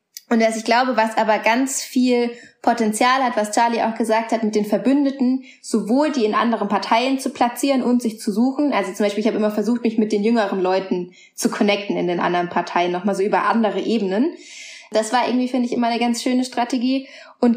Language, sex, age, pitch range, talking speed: German, female, 20-39, 215-250 Hz, 215 wpm